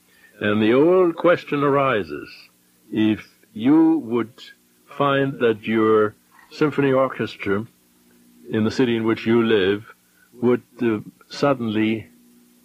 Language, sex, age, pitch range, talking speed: English, male, 60-79, 90-135 Hz, 110 wpm